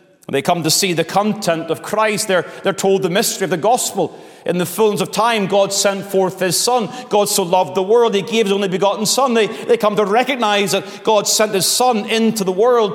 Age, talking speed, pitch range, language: 30-49, 235 wpm, 165-210 Hz, English